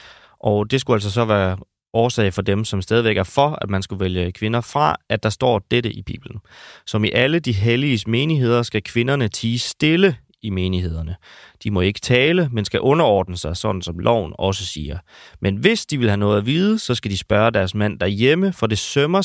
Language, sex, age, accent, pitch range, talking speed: Danish, male, 30-49, native, 100-130 Hz, 210 wpm